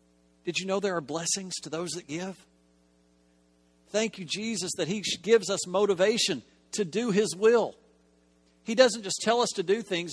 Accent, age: American, 50-69